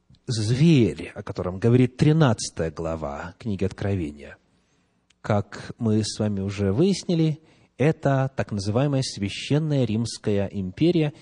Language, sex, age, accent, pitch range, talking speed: Russian, male, 30-49, native, 105-160 Hz, 105 wpm